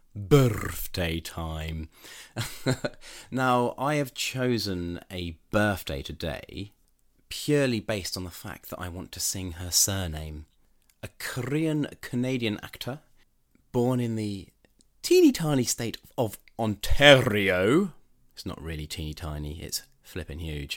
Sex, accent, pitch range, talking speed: male, British, 80-110 Hz, 120 wpm